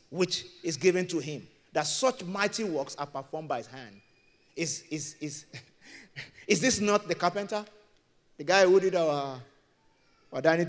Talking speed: 165 wpm